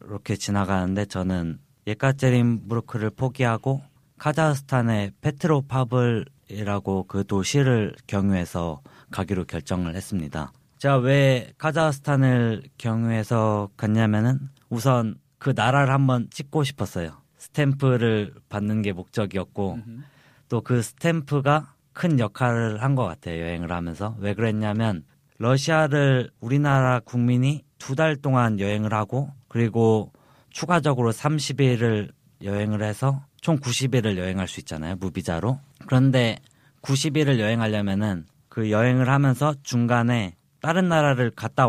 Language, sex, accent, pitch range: Korean, male, native, 105-135 Hz